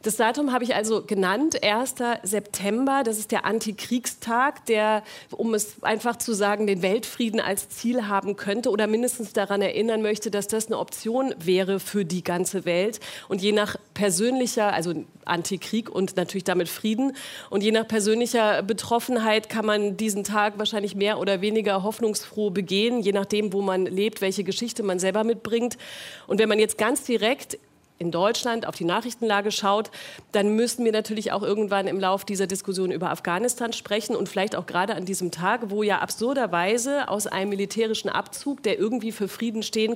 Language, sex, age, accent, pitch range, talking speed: German, female, 40-59, German, 195-225 Hz, 175 wpm